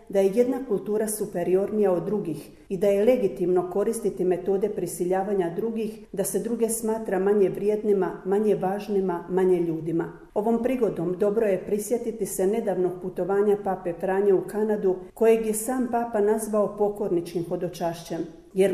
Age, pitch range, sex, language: 40-59, 185-215 Hz, female, Croatian